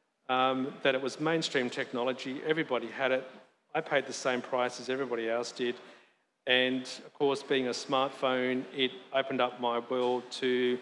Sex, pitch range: male, 125-135 Hz